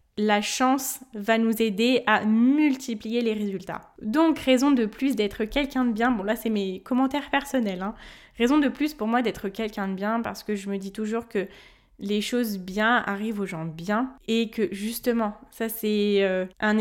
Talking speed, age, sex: 190 wpm, 20-39, female